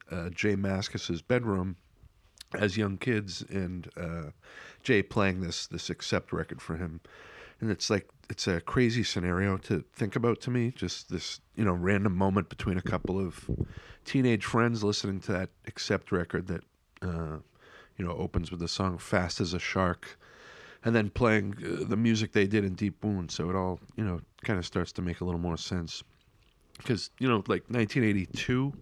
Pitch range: 90-105 Hz